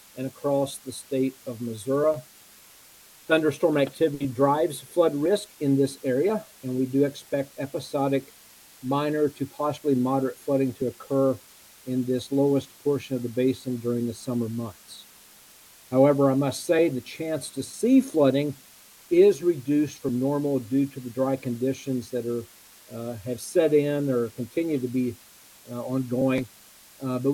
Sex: male